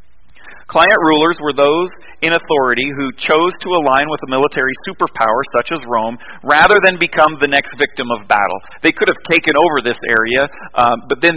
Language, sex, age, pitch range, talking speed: English, male, 40-59, 135-180 Hz, 185 wpm